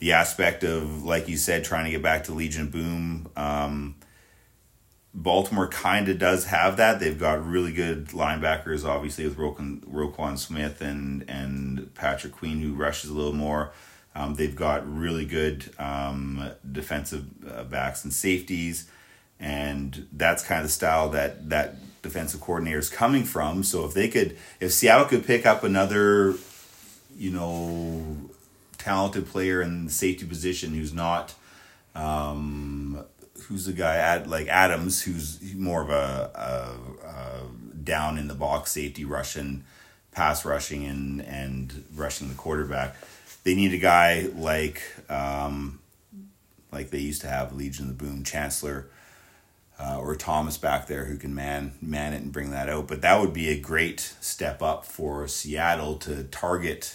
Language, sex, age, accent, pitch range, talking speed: English, male, 30-49, American, 70-85 Hz, 155 wpm